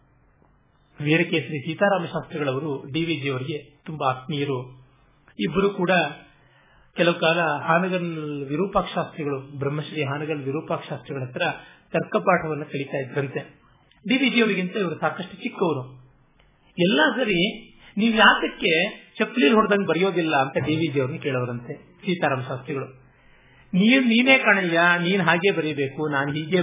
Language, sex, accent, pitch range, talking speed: Kannada, male, native, 140-190 Hz, 105 wpm